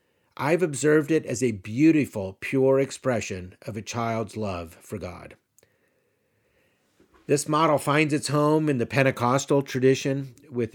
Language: English